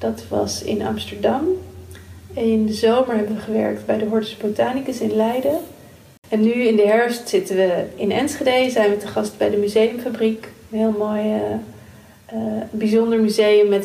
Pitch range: 190-230 Hz